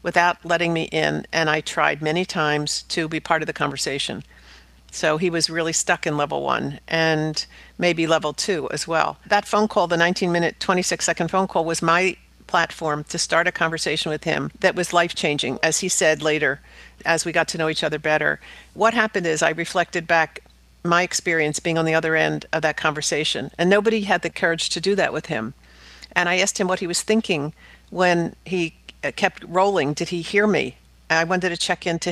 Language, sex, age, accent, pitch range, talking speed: English, female, 50-69, American, 160-180 Hz, 205 wpm